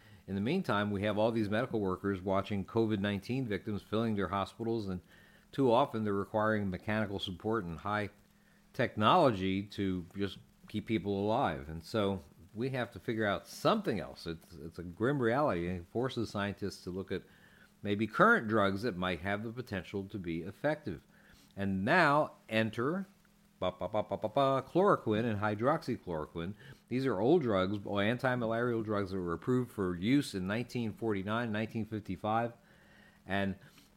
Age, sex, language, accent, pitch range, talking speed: 50-69, male, English, American, 95-115 Hz, 145 wpm